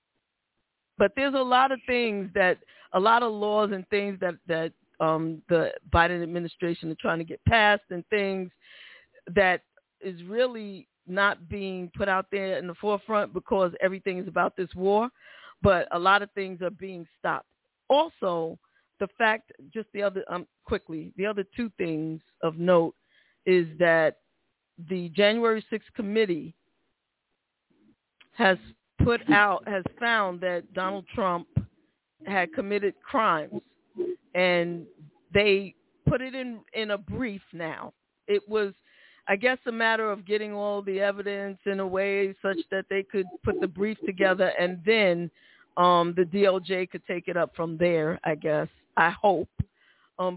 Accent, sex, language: American, female, English